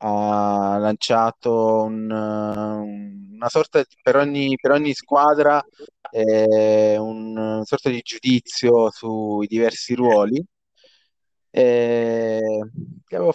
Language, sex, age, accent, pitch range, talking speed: Italian, male, 20-39, native, 105-130 Hz, 100 wpm